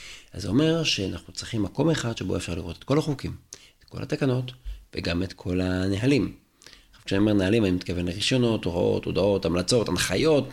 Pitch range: 90-120 Hz